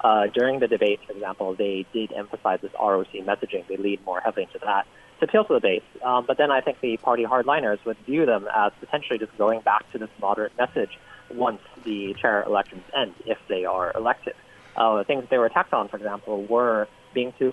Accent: American